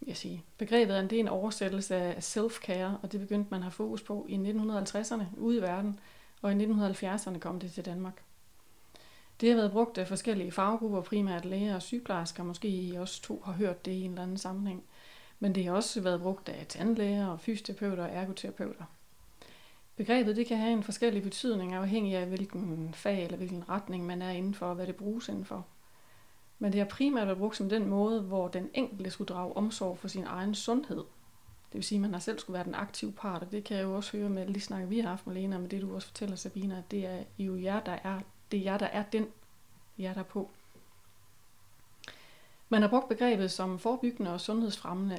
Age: 30-49